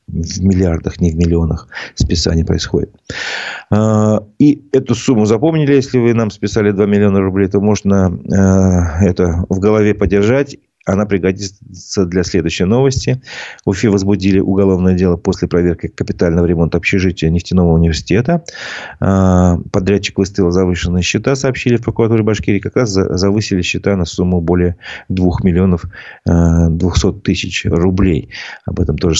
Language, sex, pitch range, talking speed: Russian, male, 90-105 Hz, 130 wpm